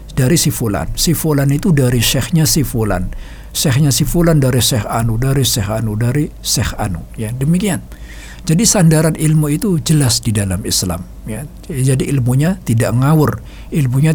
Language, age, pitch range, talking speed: Indonesian, 60-79, 105-150 Hz, 155 wpm